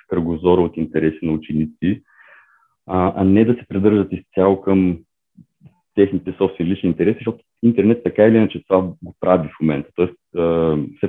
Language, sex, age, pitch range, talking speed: Bulgarian, male, 30-49, 80-105 Hz, 150 wpm